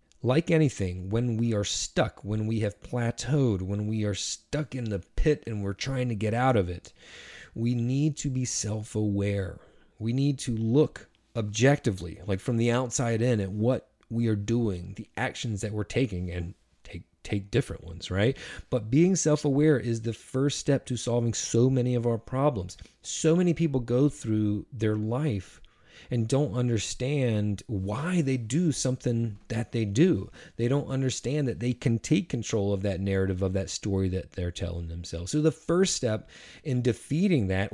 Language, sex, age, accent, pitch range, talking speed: English, male, 30-49, American, 105-150 Hz, 180 wpm